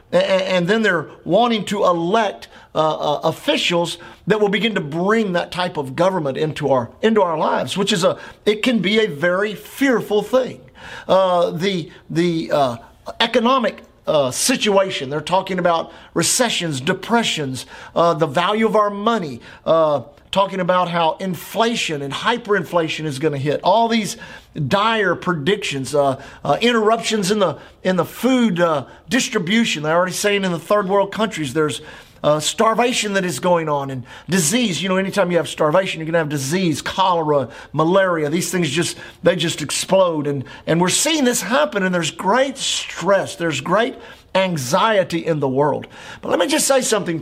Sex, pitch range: male, 165-220 Hz